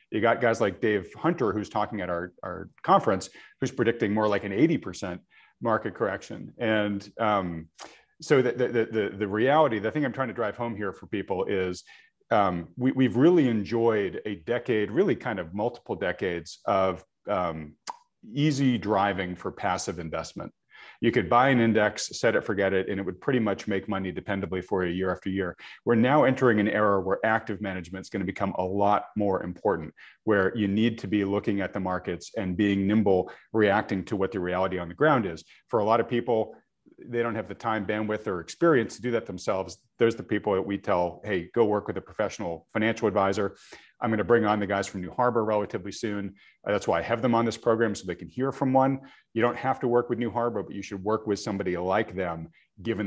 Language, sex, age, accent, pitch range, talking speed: English, male, 40-59, American, 95-115 Hz, 215 wpm